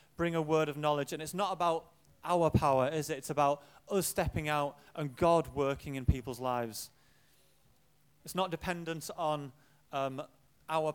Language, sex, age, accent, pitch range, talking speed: English, male, 30-49, British, 140-160 Hz, 165 wpm